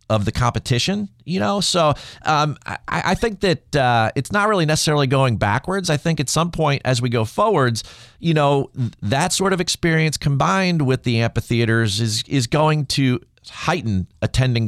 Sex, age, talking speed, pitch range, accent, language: male, 40-59, 175 wpm, 105-150 Hz, American, English